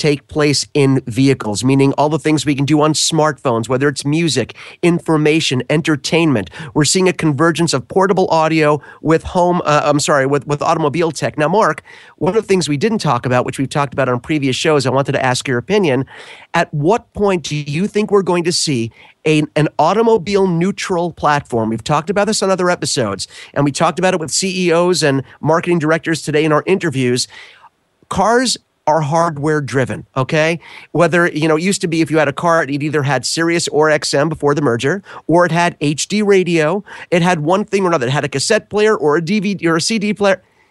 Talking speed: 205 wpm